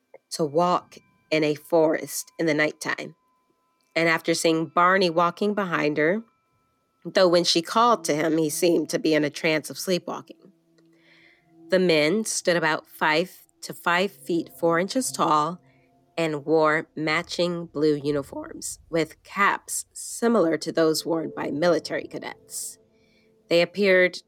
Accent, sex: American, female